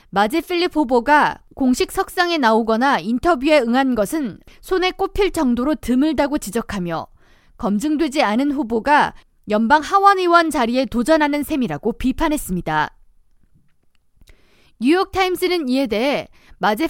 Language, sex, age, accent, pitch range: Korean, female, 20-39, native, 235-330 Hz